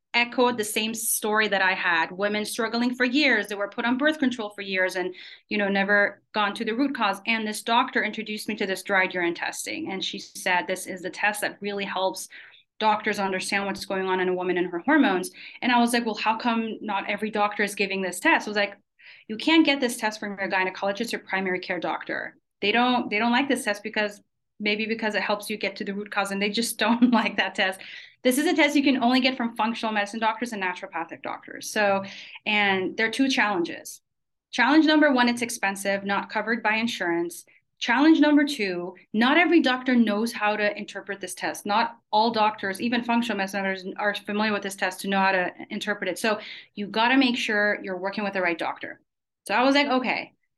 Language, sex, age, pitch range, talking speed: English, female, 30-49, 195-235 Hz, 225 wpm